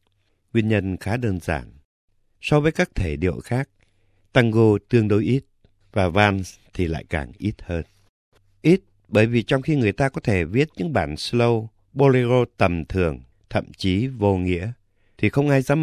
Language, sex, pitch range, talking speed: Vietnamese, male, 95-120 Hz, 175 wpm